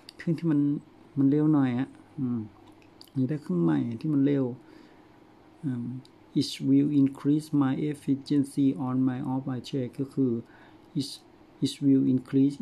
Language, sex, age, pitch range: Thai, male, 60-79, 130-150 Hz